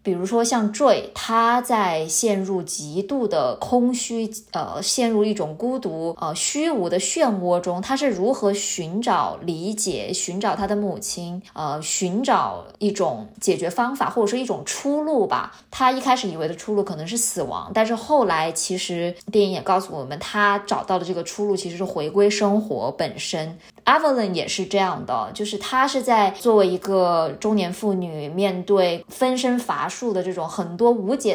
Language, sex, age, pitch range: Chinese, female, 20-39, 180-235 Hz